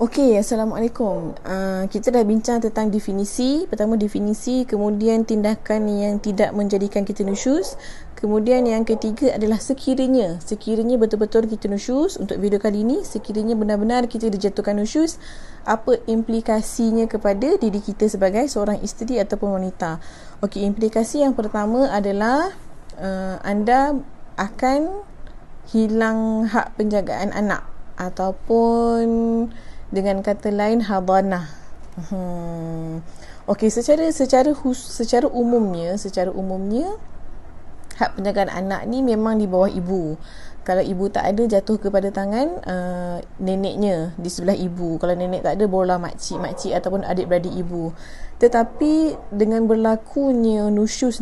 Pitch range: 190-230 Hz